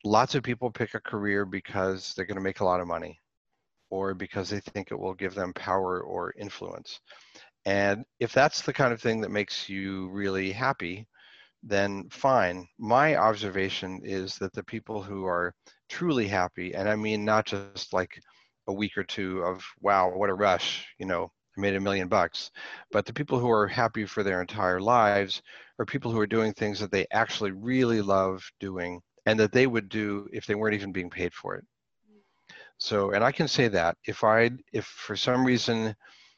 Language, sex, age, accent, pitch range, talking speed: English, male, 40-59, American, 95-115 Hz, 195 wpm